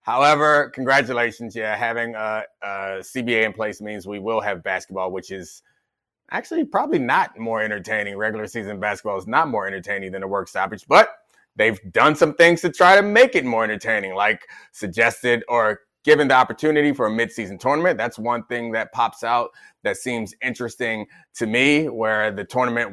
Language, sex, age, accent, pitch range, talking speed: English, male, 30-49, American, 110-140 Hz, 180 wpm